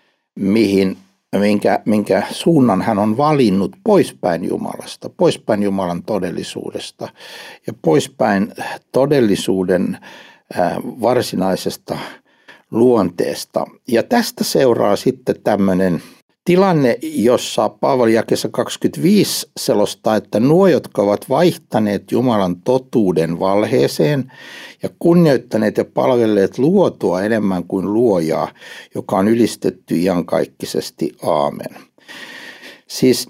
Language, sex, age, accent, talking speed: Finnish, male, 60-79, native, 90 wpm